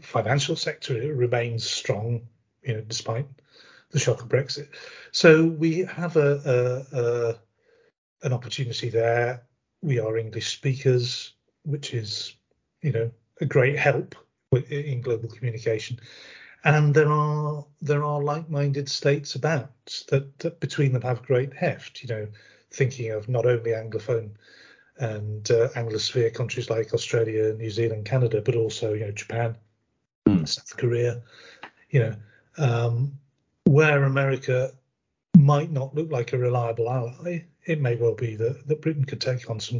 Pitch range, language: 115-145 Hz, English